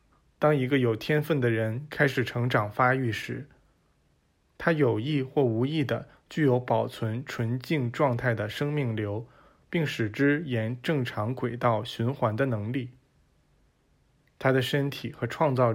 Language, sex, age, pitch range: Chinese, male, 20-39, 115-145 Hz